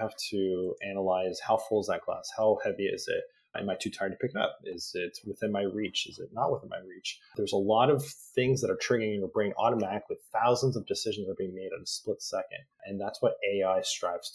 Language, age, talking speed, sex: English, 30-49, 240 wpm, male